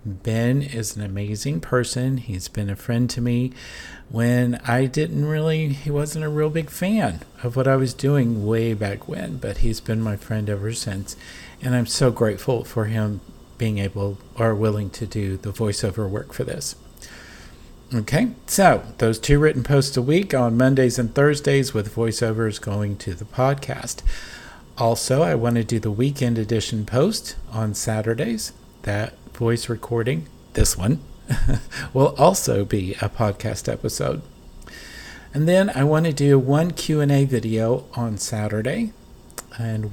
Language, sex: English, male